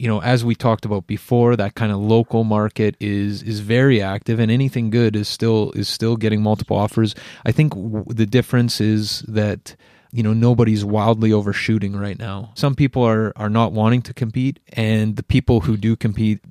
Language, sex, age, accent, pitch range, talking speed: English, male, 30-49, American, 100-115 Hz, 195 wpm